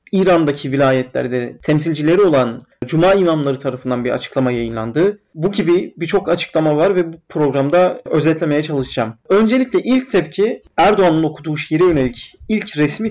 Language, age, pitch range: Turkish, 40-59, 150-195 Hz